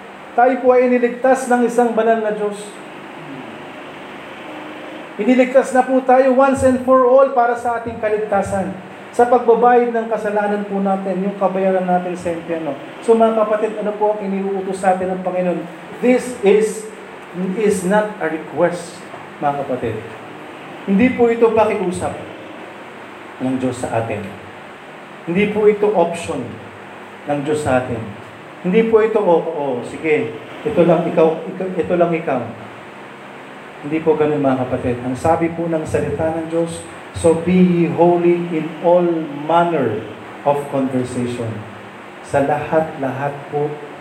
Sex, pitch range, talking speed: male, 135-210 Hz, 140 wpm